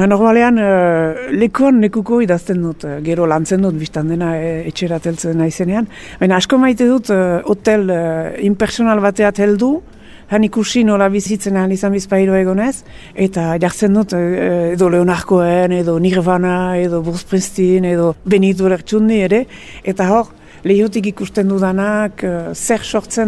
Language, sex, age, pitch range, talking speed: French, female, 60-79, 180-215 Hz, 85 wpm